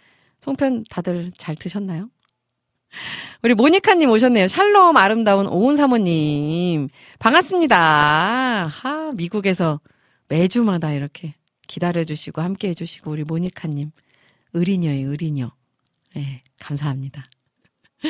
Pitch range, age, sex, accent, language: 155-235 Hz, 40-59, female, native, Korean